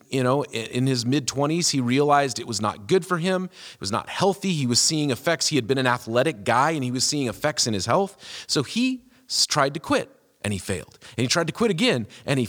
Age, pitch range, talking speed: 40-59, 130-180 Hz, 250 wpm